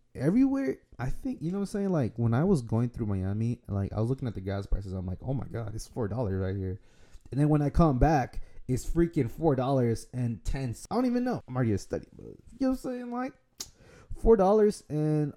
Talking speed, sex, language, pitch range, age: 245 wpm, male, English, 105-150 Hz, 20-39